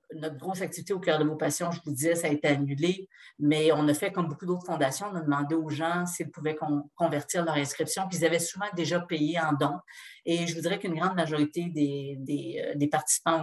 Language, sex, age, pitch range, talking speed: French, female, 40-59, 155-190 Hz, 230 wpm